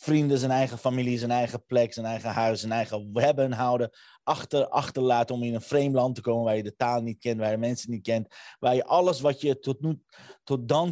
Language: Dutch